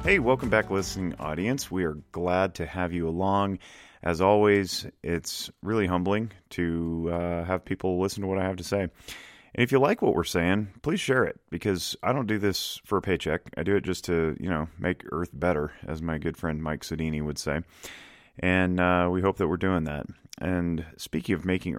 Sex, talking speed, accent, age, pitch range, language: male, 210 wpm, American, 30-49, 80-95 Hz, English